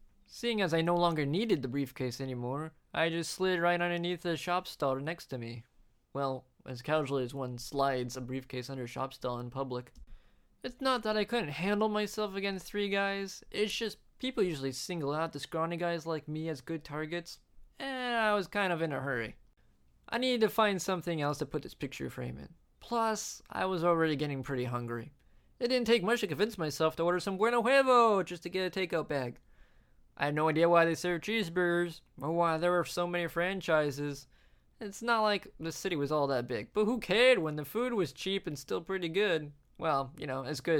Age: 20-39